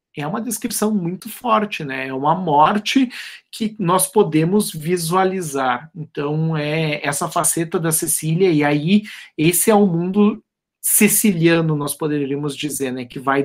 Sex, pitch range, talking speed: male, 150-175 Hz, 145 wpm